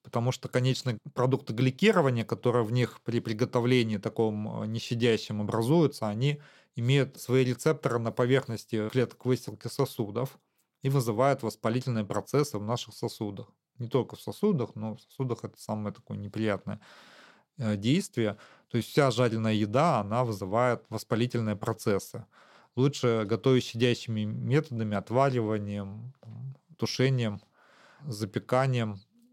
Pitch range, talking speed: 110-130 Hz, 115 wpm